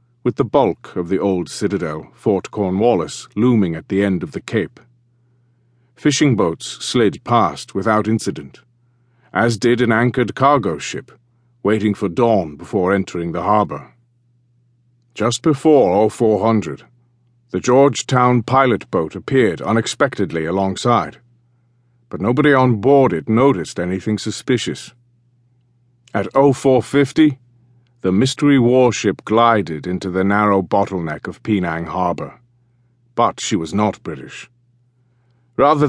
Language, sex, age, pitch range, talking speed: English, male, 50-69, 105-120 Hz, 120 wpm